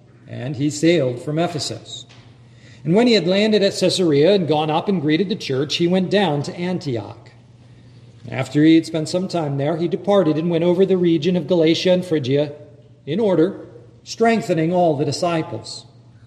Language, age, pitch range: English, 40-59, 130-185 Hz